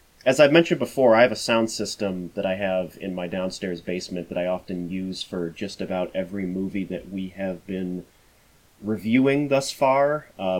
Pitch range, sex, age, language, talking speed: 95-125 Hz, male, 30-49, English, 185 wpm